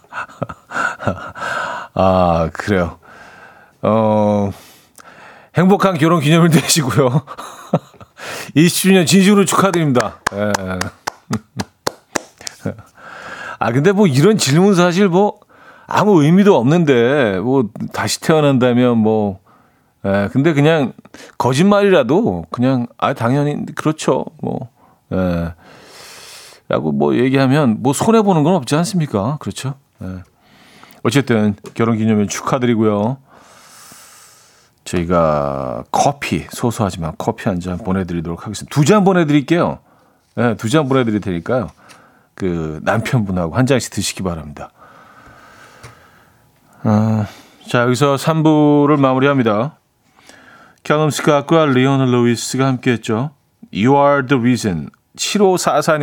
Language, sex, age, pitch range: Korean, male, 40-59, 105-155 Hz